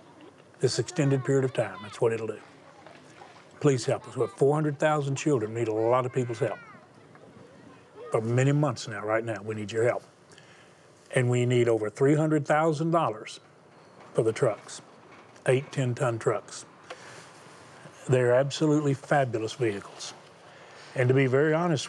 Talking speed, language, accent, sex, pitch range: 145 wpm, English, American, male, 115-145 Hz